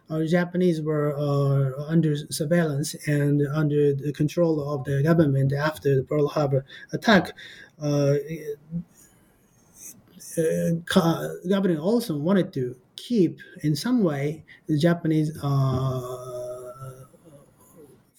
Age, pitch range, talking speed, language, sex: 30-49, 140-170 Hz, 105 wpm, English, male